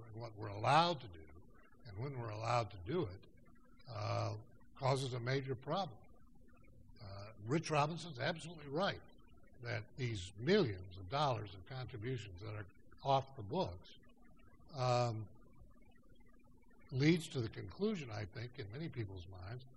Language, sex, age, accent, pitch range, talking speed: English, male, 60-79, American, 110-135 Hz, 135 wpm